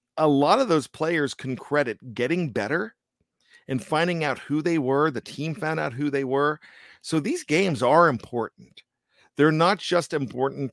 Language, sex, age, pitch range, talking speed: English, male, 40-59, 125-155 Hz, 175 wpm